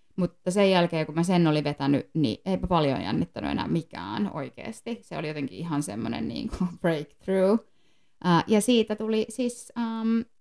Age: 20-39